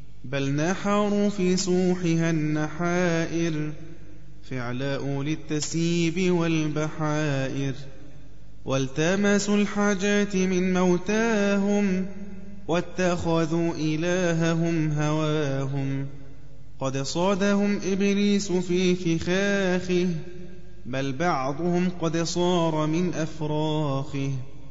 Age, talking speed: 20-39, 65 wpm